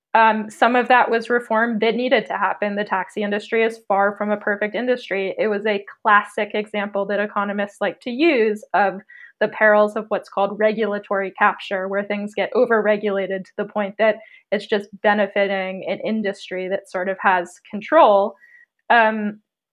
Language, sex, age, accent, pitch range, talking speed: English, female, 20-39, American, 200-235 Hz, 170 wpm